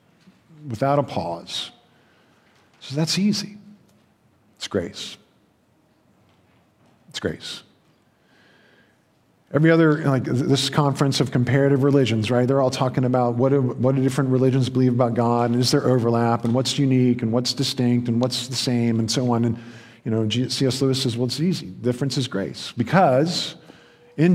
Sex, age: male, 50-69